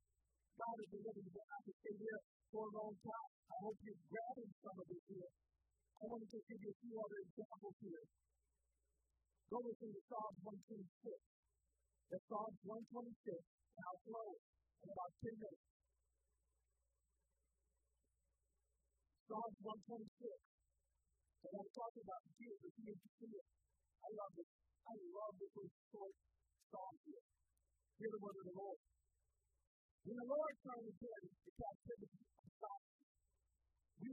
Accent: American